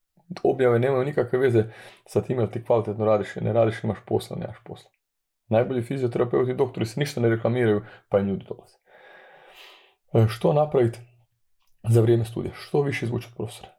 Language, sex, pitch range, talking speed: Croatian, male, 110-120 Hz, 155 wpm